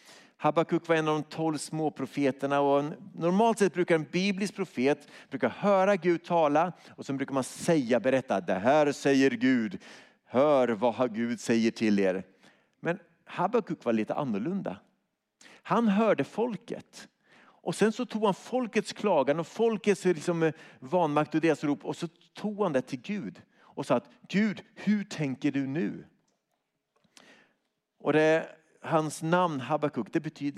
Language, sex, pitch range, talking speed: Swedish, male, 140-200 Hz, 155 wpm